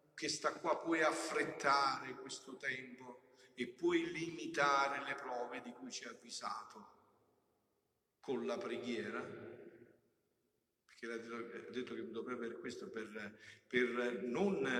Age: 50-69